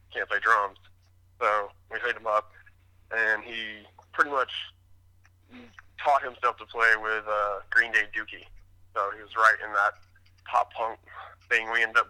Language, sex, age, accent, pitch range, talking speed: English, male, 20-39, American, 90-125 Hz, 165 wpm